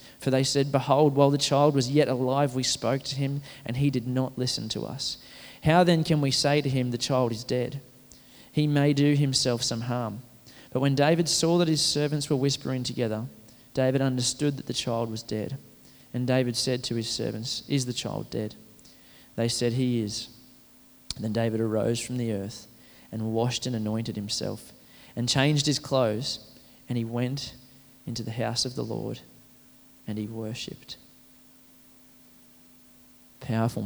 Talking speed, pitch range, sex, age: 175 wpm, 120-135 Hz, male, 20-39